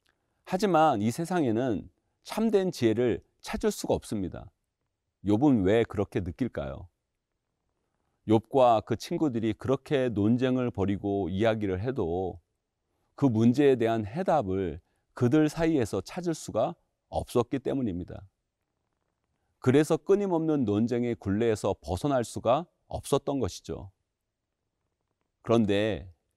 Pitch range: 95-140 Hz